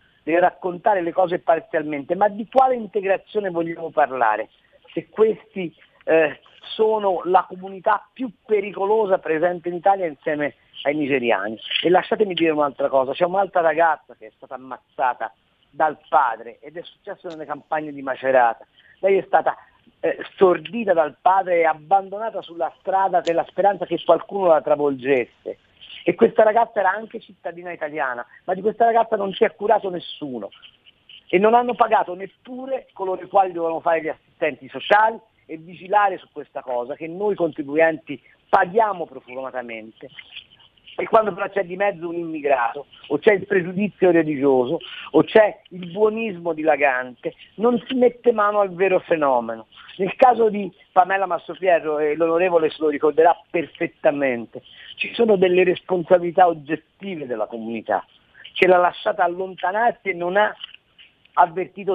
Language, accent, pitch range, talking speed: Italian, native, 155-200 Hz, 150 wpm